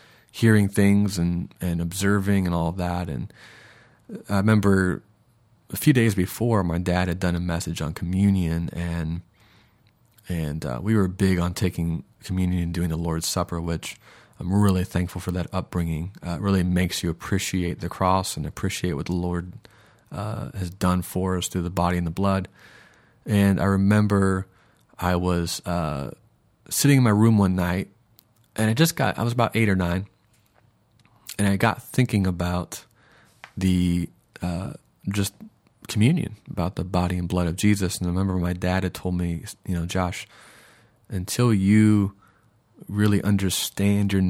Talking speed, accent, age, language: 165 wpm, American, 30-49, English